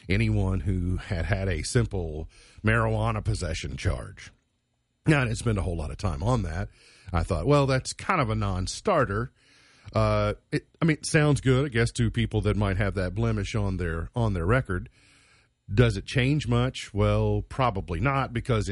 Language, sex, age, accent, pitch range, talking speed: English, male, 40-59, American, 95-125 Hz, 185 wpm